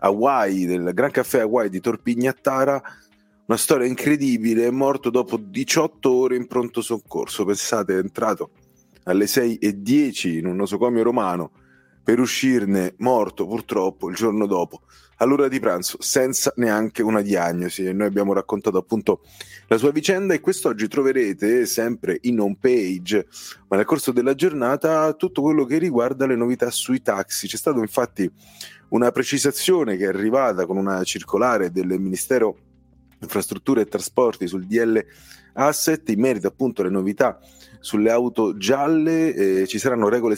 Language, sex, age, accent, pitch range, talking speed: Italian, male, 30-49, native, 100-135 Hz, 150 wpm